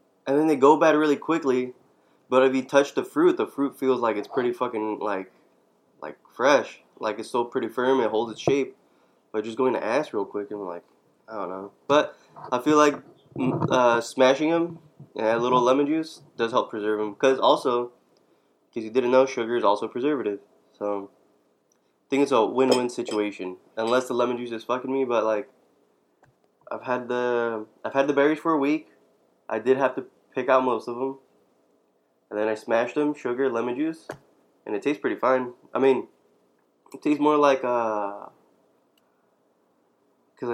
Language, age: English, 20-39